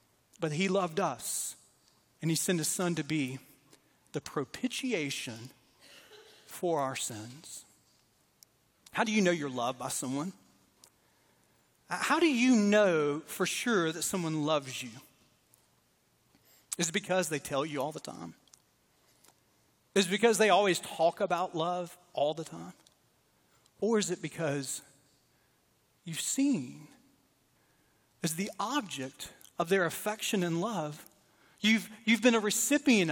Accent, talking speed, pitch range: American, 130 wpm, 165-220 Hz